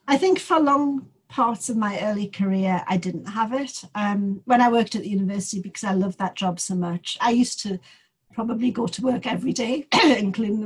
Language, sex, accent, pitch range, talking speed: English, female, British, 185-225 Hz, 215 wpm